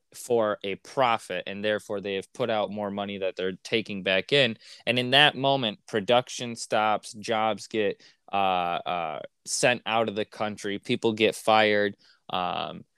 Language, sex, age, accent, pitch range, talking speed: English, male, 20-39, American, 100-125 Hz, 160 wpm